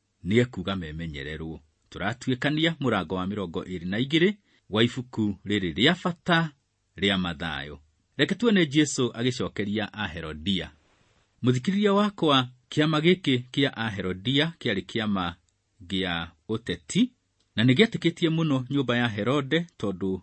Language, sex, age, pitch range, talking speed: English, male, 40-59, 90-135 Hz, 125 wpm